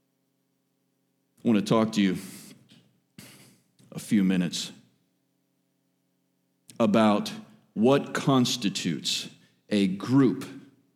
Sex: male